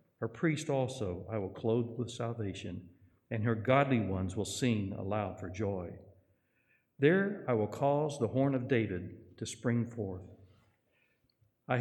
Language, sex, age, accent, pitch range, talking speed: English, male, 60-79, American, 95-120 Hz, 145 wpm